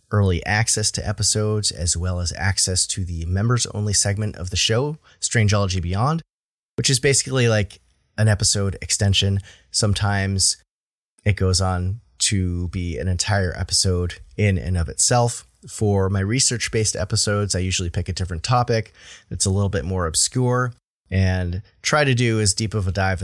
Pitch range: 95-110 Hz